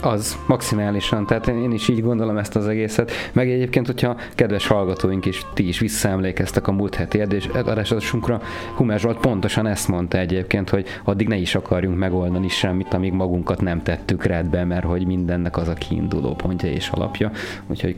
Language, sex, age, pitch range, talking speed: Hungarian, male, 30-49, 90-105 Hz, 175 wpm